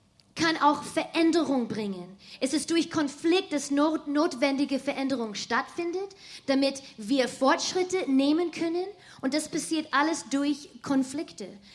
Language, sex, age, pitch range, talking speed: German, female, 20-39, 255-315 Hz, 125 wpm